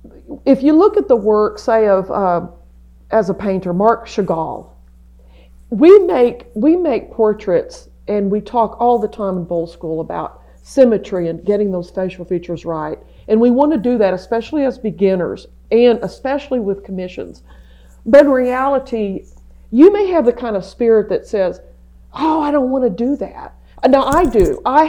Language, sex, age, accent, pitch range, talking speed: English, female, 50-69, American, 185-250 Hz, 175 wpm